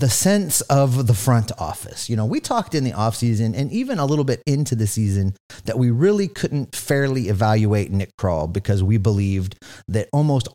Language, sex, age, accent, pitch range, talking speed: English, male, 30-49, American, 105-145 Hz, 200 wpm